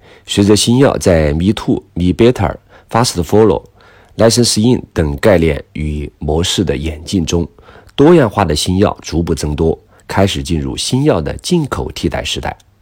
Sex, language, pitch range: male, Chinese, 80-105 Hz